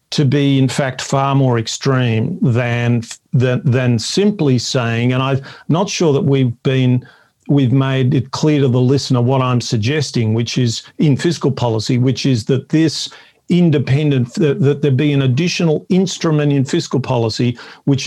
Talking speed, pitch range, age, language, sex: 165 wpm, 125-145 Hz, 50-69, English, male